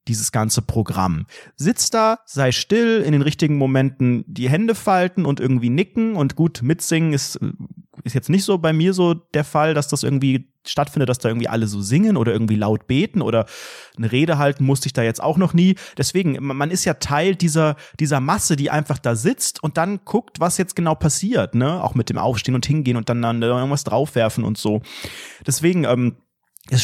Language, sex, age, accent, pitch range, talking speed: German, male, 30-49, German, 130-170 Hz, 205 wpm